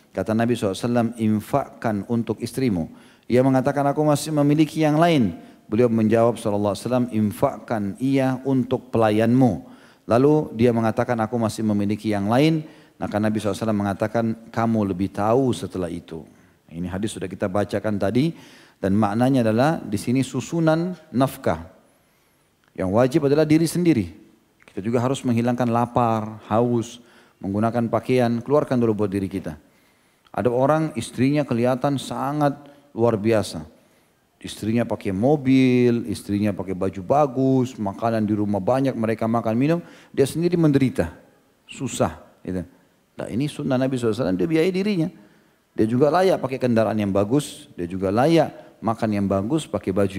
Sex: male